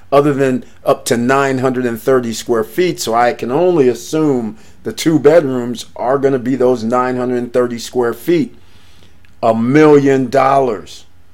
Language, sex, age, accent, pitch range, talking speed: English, male, 40-59, American, 110-140 Hz, 130 wpm